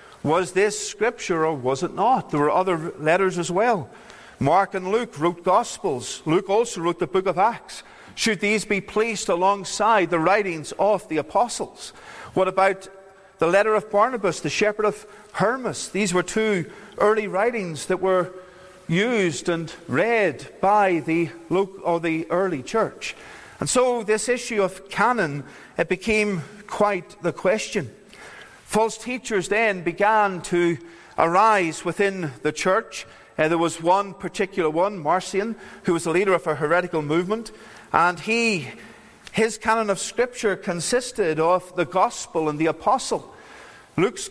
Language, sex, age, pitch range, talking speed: English, male, 50-69, 170-210 Hz, 150 wpm